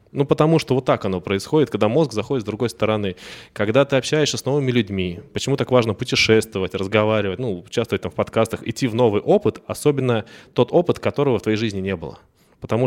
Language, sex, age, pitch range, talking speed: Russian, male, 20-39, 100-125 Hz, 195 wpm